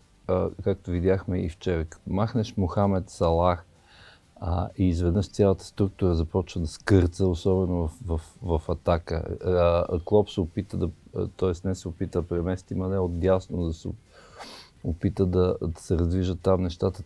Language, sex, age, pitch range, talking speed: Bulgarian, male, 50-69, 85-100 Hz, 155 wpm